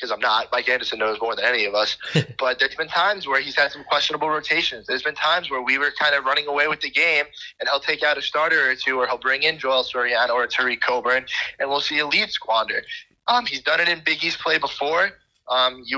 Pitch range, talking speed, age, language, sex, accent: 135-160 Hz, 250 wpm, 20-39, English, male, American